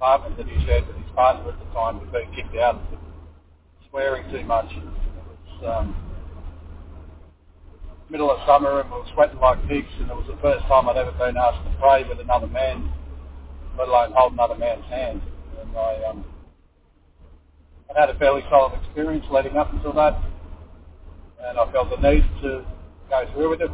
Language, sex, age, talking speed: English, male, 40-59, 190 wpm